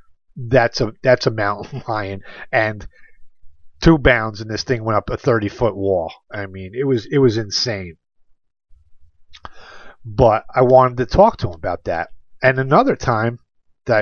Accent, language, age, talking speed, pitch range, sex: American, English, 40-59, 165 wpm, 95-120 Hz, male